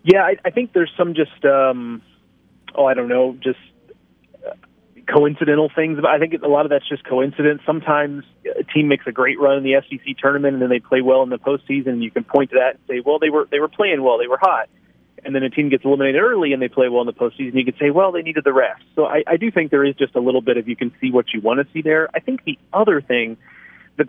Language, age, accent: English, 30-49, American